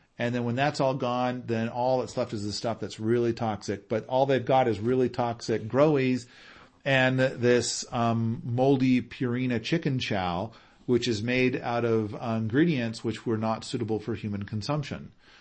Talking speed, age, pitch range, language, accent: 175 wpm, 40-59, 110-140 Hz, English, American